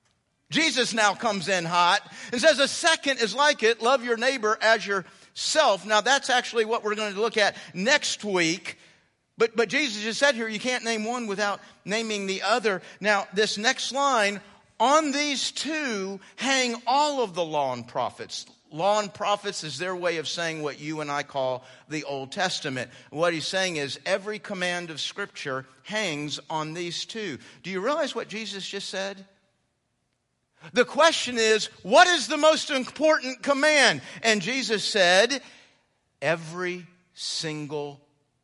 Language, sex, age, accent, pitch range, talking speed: English, male, 50-69, American, 180-245 Hz, 165 wpm